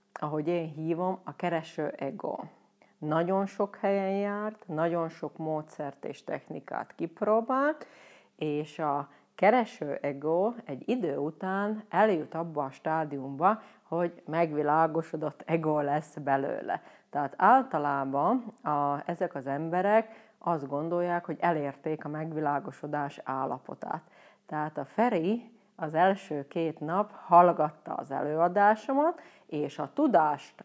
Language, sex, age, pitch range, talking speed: Hungarian, female, 30-49, 155-200 Hz, 110 wpm